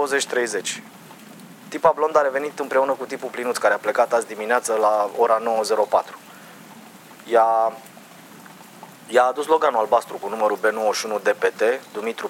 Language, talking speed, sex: Romanian, 125 wpm, male